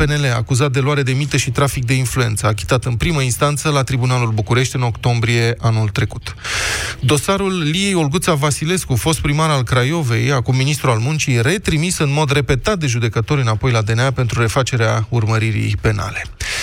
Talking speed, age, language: 165 wpm, 20-39, Romanian